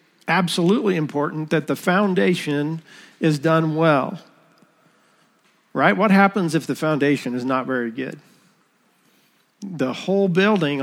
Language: English